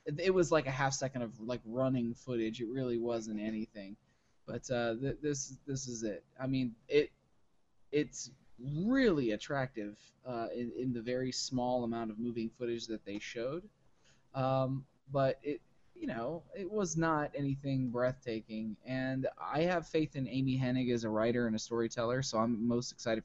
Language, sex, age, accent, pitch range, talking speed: English, male, 20-39, American, 115-140 Hz, 175 wpm